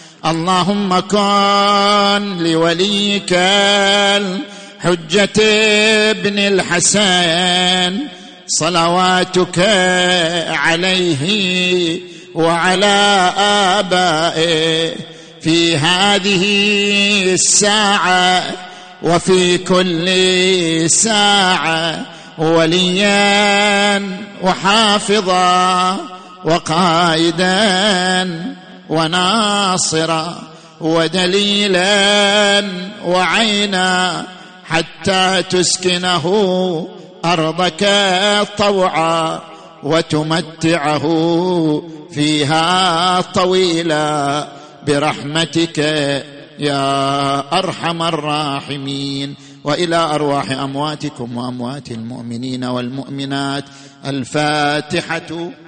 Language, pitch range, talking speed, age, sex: Arabic, 160-190 Hz, 45 wpm, 50-69, male